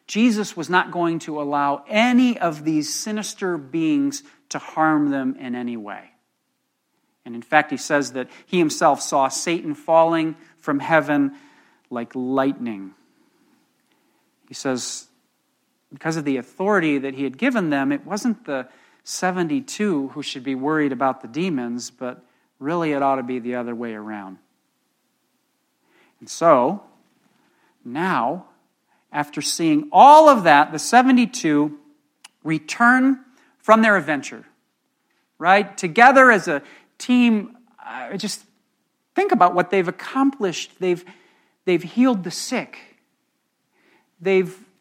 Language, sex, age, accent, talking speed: English, male, 50-69, American, 125 wpm